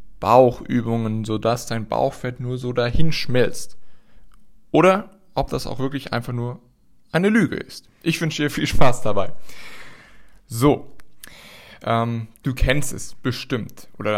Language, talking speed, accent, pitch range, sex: German, 135 wpm, German, 110-130 Hz, male